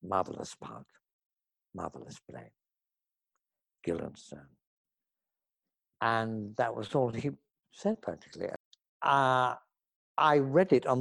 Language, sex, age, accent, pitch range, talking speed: English, male, 60-79, British, 105-150 Hz, 95 wpm